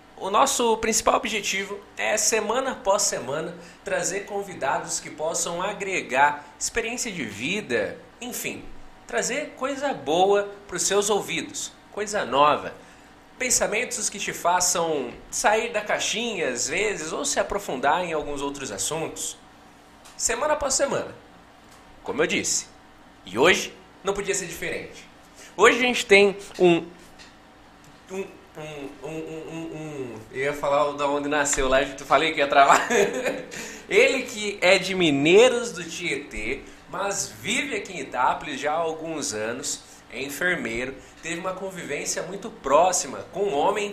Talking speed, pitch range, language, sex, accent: 140 wpm, 155-210 Hz, Portuguese, male, Brazilian